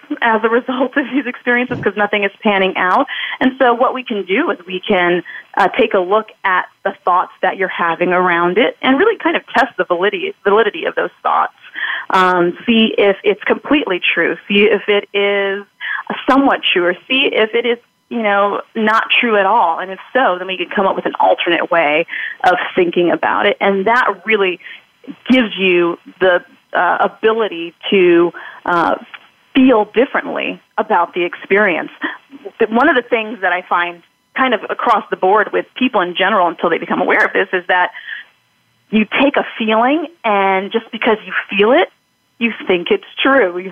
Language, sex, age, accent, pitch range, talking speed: English, female, 30-49, American, 185-255 Hz, 185 wpm